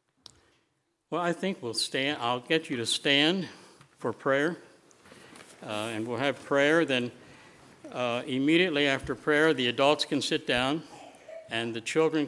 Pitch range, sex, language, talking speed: 105-140 Hz, male, English, 145 wpm